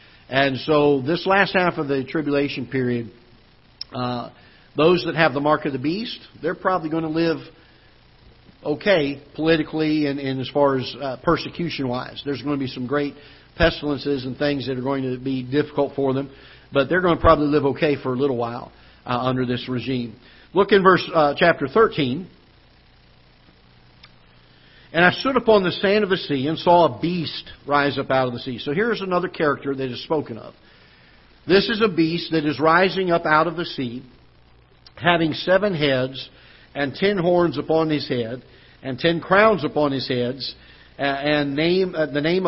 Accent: American